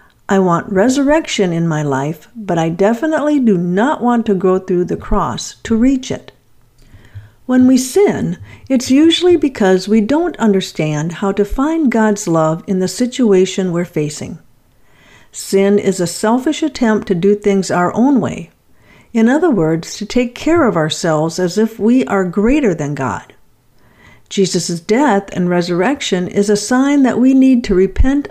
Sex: female